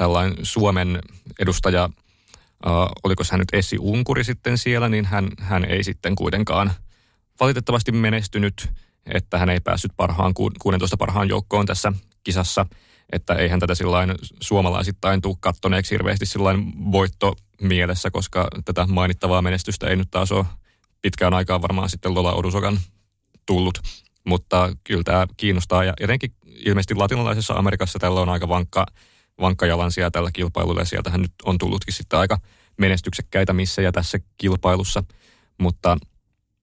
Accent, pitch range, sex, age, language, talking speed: native, 90-100 Hz, male, 30-49, Finnish, 135 wpm